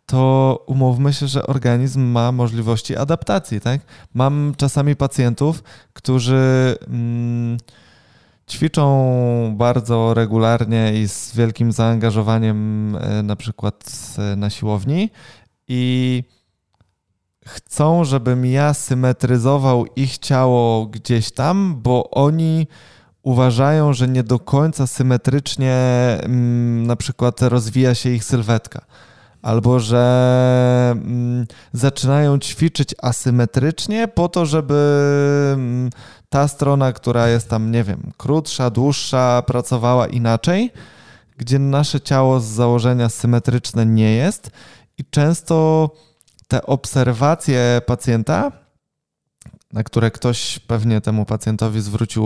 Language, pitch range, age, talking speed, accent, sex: Polish, 115-140 Hz, 20-39, 100 wpm, native, male